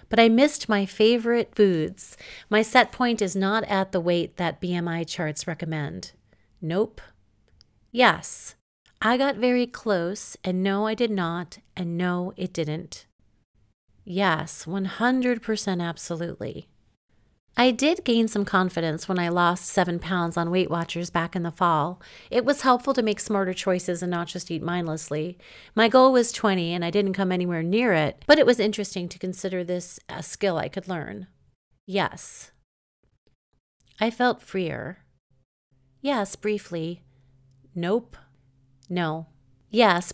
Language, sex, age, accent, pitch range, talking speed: English, female, 40-59, American, 165-210 Hz, 145 wpm